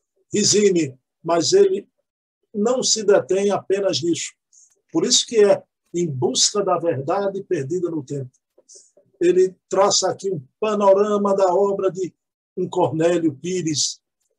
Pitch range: 175-215 Hz